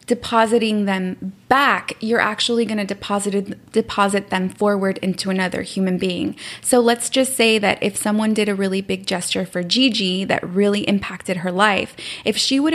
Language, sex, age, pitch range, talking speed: English, female, 20-39, 190-225 Hz, 170 wpm